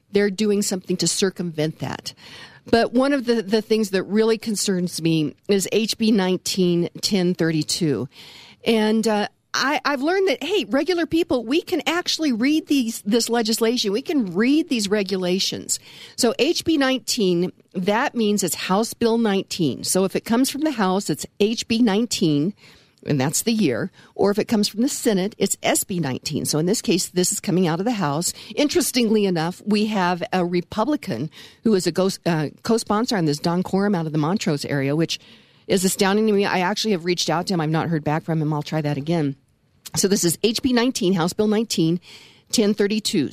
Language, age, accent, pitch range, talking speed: English, 50-69, American, 175-225 Hz, 185 wpm